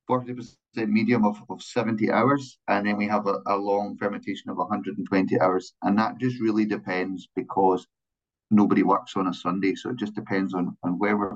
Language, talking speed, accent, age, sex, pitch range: English, 190 wpm, British, 30-49, male, 95-110 Hz